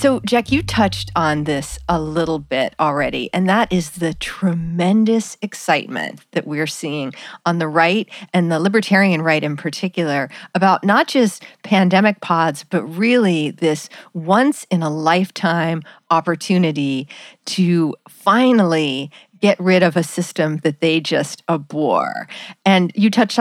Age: 40-59